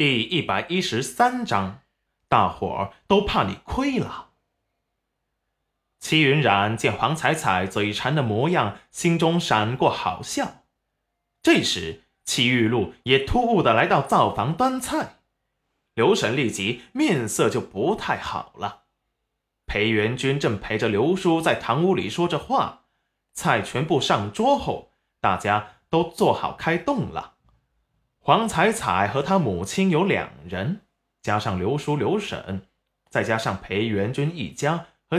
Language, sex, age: Chinese, male, 20-39